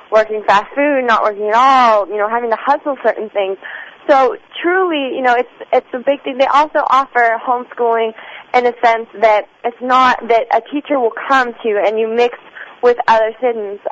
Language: English